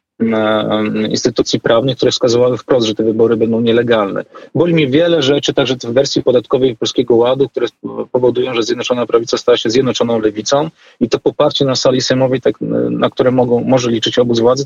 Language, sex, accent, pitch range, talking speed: Polish, male, native, 115-135 Hz, 180 wpm